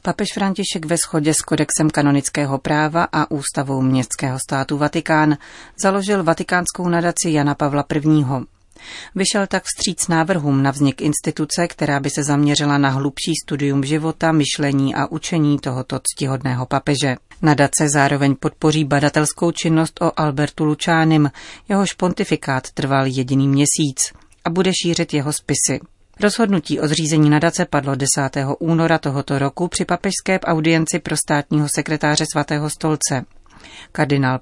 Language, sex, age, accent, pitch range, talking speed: Czech, female, 30-49, native, 140-165 Hz, 135 wpm